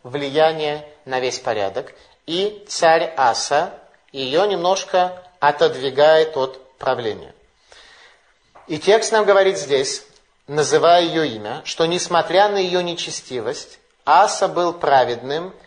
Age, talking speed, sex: 30-49, 105 wpm, male